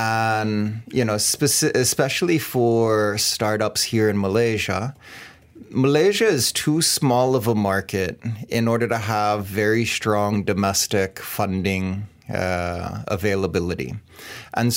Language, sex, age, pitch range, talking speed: English, male, 30-49, 105-125 Hz, 110 wpm